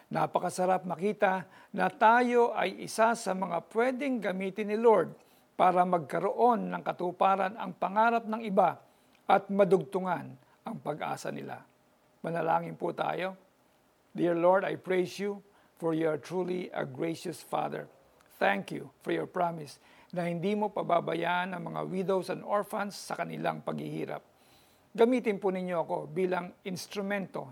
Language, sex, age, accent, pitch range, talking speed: Filipino, male, 50-69, native, 180-205 Hz, 135 wpm